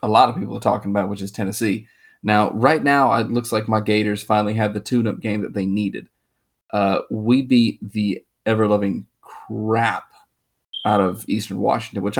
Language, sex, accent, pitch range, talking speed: English, male, American, 105-115 Hz, 180 wpm